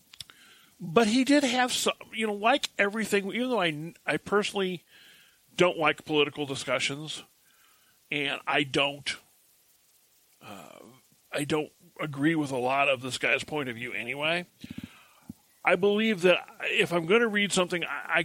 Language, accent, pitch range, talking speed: English, American, 145-200 Hz, 150 wpm